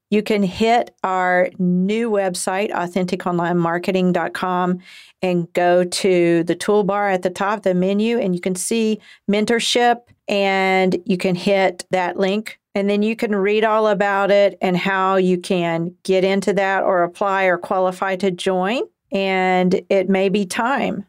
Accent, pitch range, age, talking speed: American, 180-200 Hz, 50-69, 155 wpm